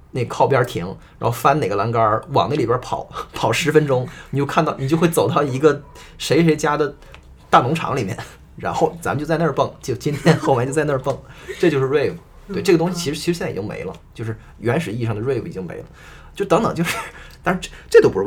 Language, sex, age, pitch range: Chinese, male, 20-39, 105-160 Hz